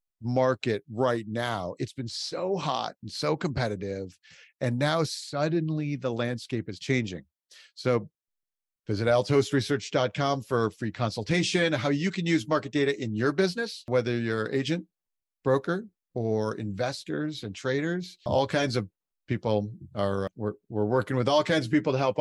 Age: 50-69